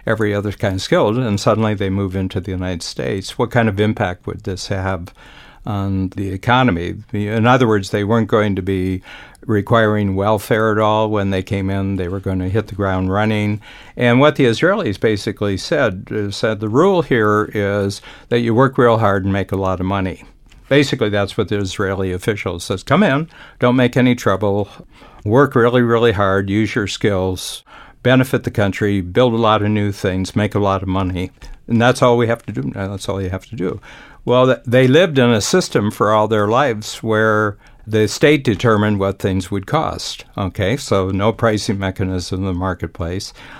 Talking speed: 195 wpm